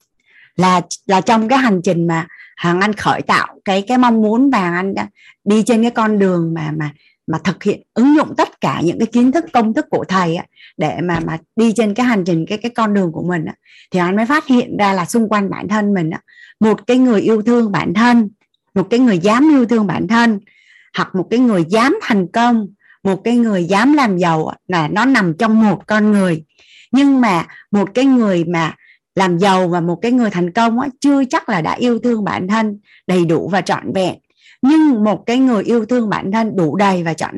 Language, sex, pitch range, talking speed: Vietnamese, female, 180-240 Hz, 235 wpm